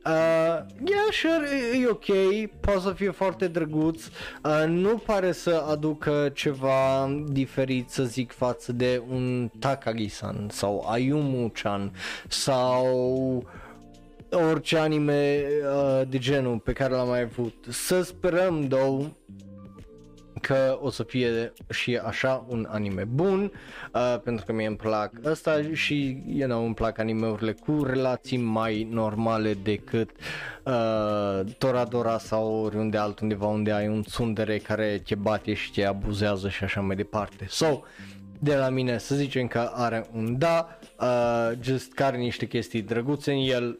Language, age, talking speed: Romanian, 20-39, 135 wpm